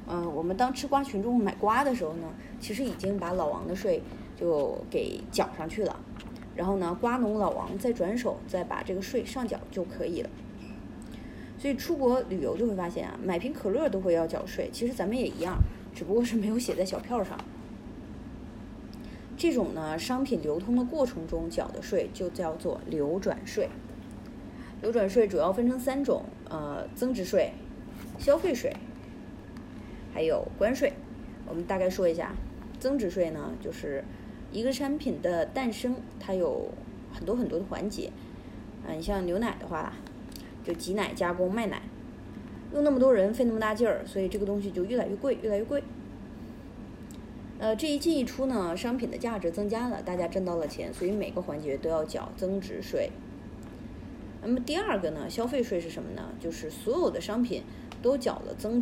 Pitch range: 190-255 Hz